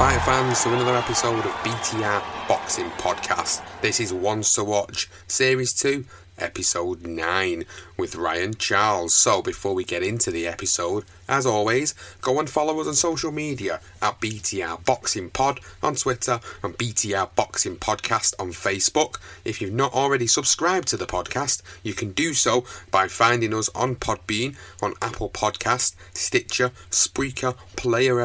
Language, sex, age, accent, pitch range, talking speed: English, male, 30-49, British, 95-125 Hz, 155 wpm